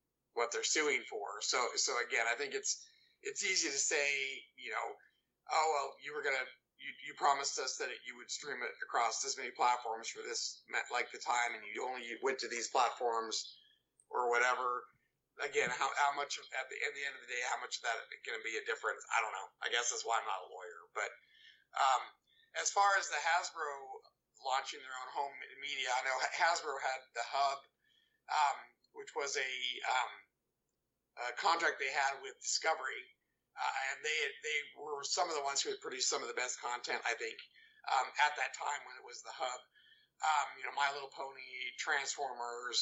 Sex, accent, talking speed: male, American, 205 wpm